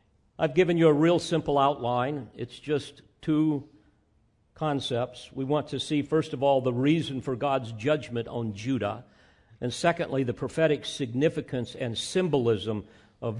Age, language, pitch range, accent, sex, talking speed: 50-69, English, 120-165 Hz, American, male, 150 wpm